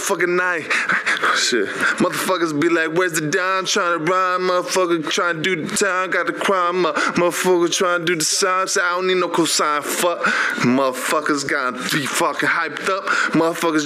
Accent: American